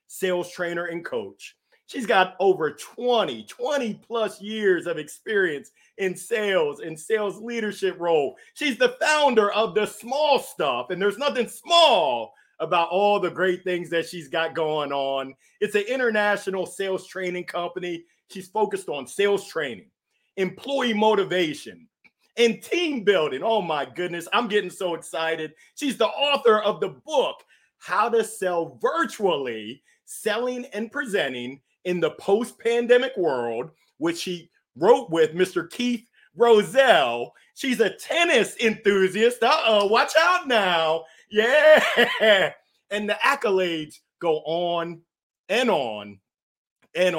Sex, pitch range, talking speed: male, 170-240 Hz, 135 wpm